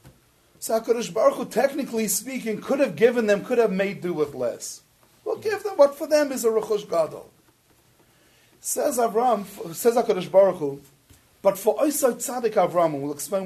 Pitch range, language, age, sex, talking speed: 155-225 Hz, English, 40-59, male, 180 wpm